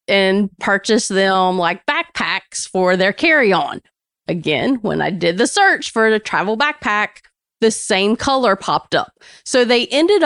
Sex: female